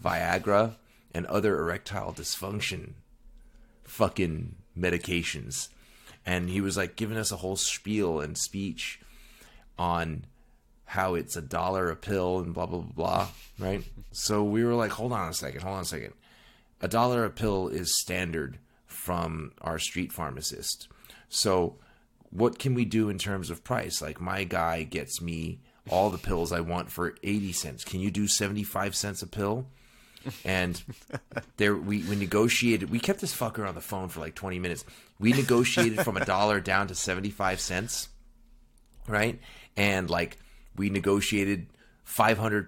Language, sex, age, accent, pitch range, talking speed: English, male, 30-49, American, 90-115 Hz, 160 wpm